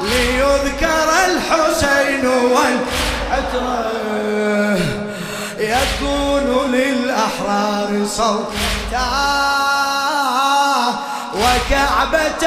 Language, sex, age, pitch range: Arabic, male, 30-49, 210-280 Hz